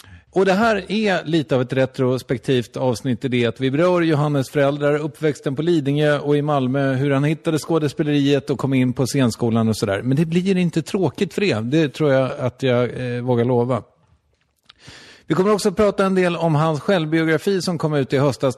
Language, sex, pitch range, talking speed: English, male, 115-155 Hz, 200 wpm